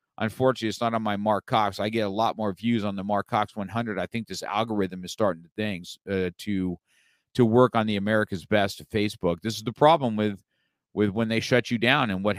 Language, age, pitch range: English, 50-69, 105-125 Hz